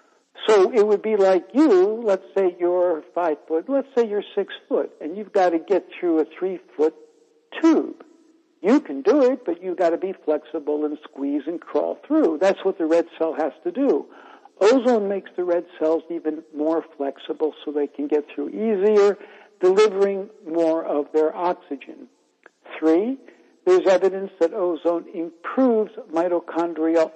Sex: male